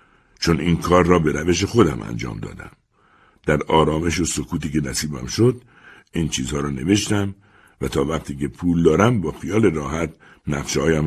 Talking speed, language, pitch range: 165 wpm, Persian, 75-95 Hz